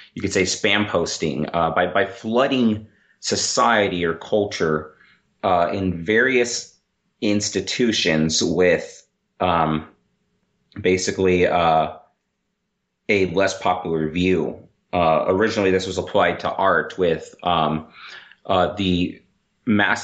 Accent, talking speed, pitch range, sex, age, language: American, 110 wpm, 85-100 Hz, male, 30-49, English